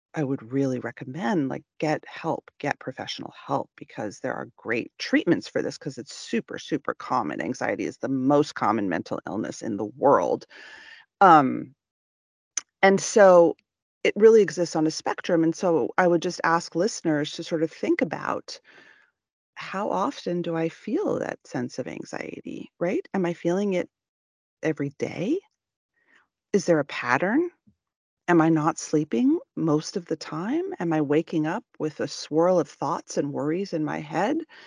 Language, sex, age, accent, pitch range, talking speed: English, female, 40-59, American, 150-205 Hz, 165 wpm